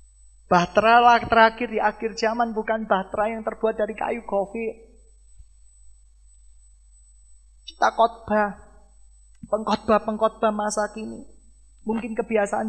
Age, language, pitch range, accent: 40-59, Indonesian, 155-220 Hz, native